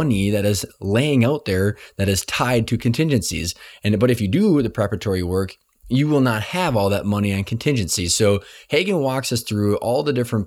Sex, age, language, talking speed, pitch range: male, 20-39, English, 200 wpm, 95-120 Hz